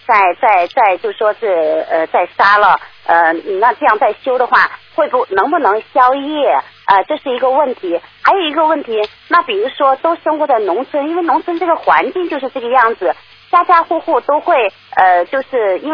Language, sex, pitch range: Chinese, female, 230-330 Hz